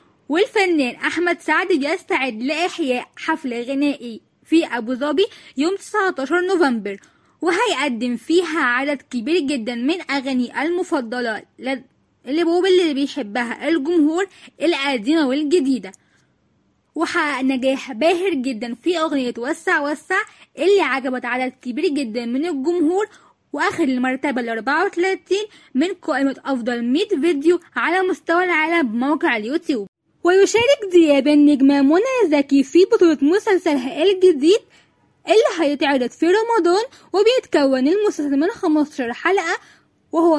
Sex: female